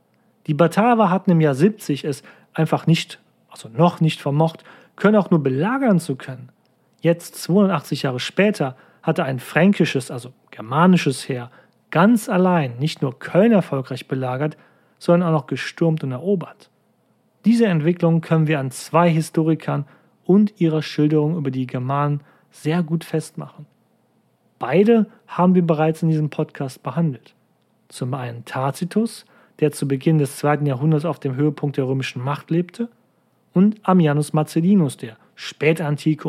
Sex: male